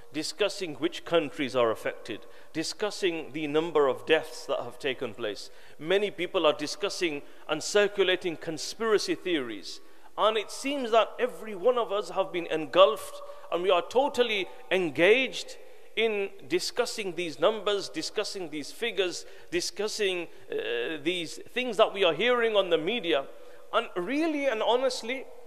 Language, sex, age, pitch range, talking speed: English, male, 50-69, 185-310 Hz, 140 wpm